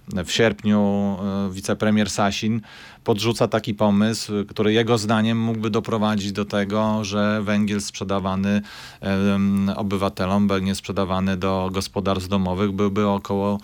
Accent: native